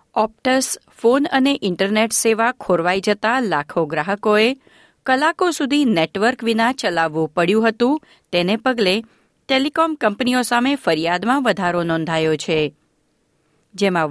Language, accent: Gujarati, native